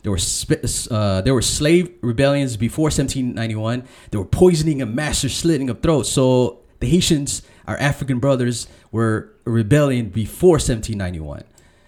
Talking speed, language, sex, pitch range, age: 135 wpm, English, male, 115-150 Hz, 20-39